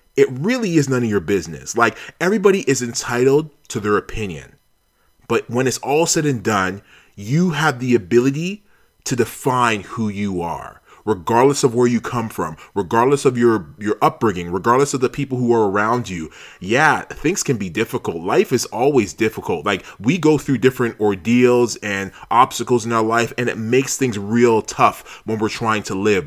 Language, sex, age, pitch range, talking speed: English, male, 30-49, 105-130 Hz, 185 wpm